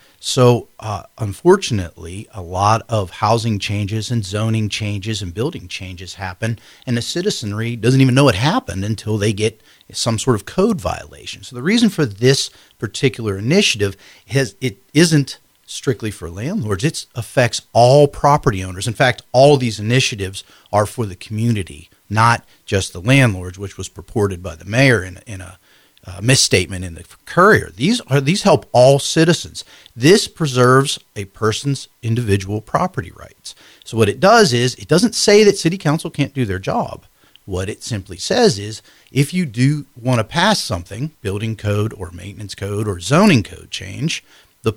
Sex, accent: male, American